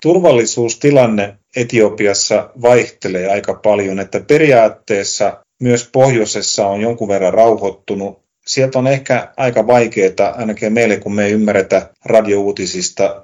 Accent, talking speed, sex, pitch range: native, 115 wpm, male, 95-115 Hz